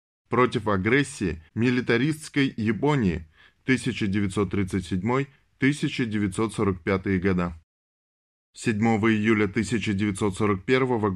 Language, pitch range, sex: Russian, 100-130 Hz, male